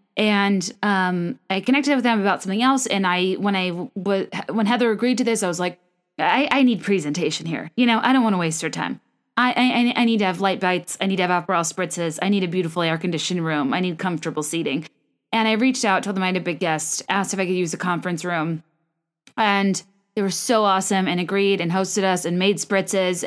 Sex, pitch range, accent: female, 175-210 Hz, American